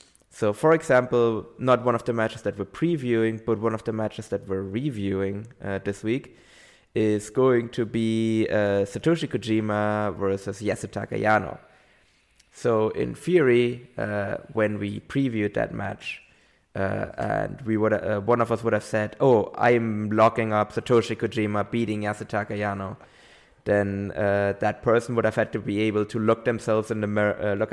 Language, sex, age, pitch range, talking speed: English, male, 20-39, 100-115 Hz, 170 wpm